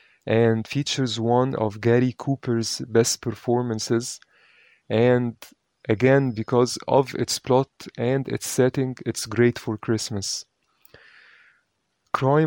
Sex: male